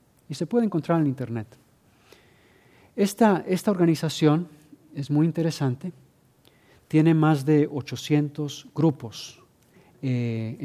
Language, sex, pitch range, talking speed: English, male, 125-160 Hz, 100 wpm